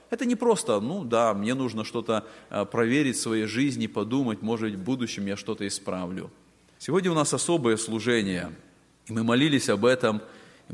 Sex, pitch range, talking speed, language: male, 120-180 Hz, 170 wpm, Russian